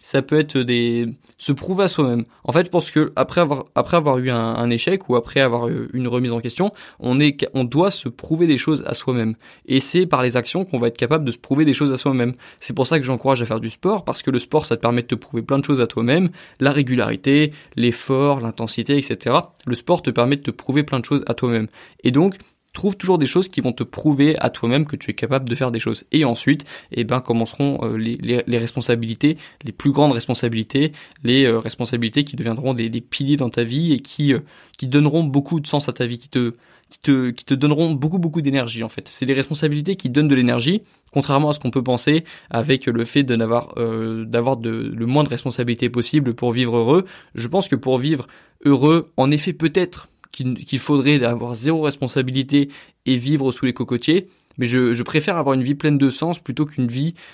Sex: male